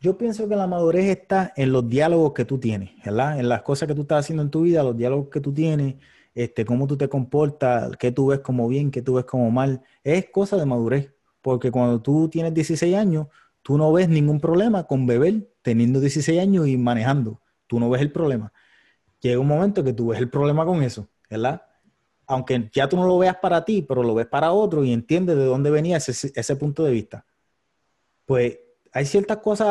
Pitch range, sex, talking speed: 130-170 Hz, male, 215 wpm